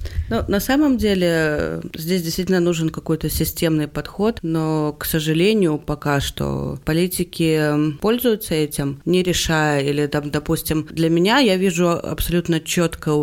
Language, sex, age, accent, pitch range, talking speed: Russian, female, 20-39, native, 150-195 Hz, 130 wpm